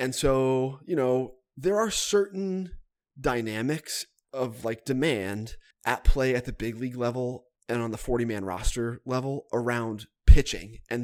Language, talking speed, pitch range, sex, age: English, 145 wpm, 110-140 Hz, male, 20-39